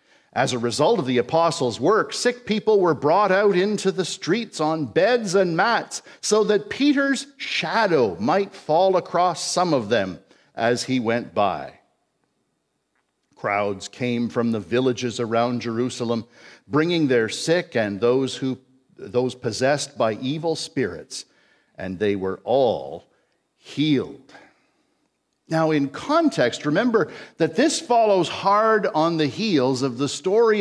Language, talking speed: English, 135 wpm